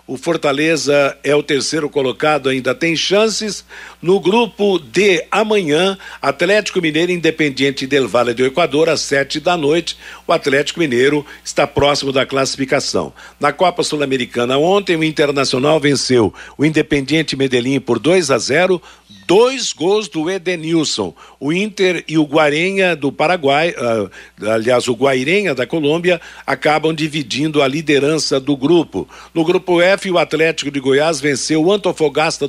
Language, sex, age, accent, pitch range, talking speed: Portuguese, male, 60-79, Brazilian, 140-180 Hz, 145 wpm